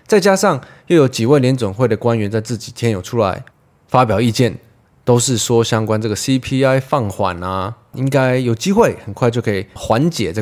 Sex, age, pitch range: male, 20-39, 105-145 Hz